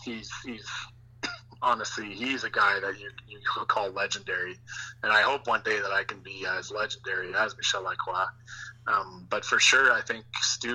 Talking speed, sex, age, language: 180 wpm, male, 20-39, English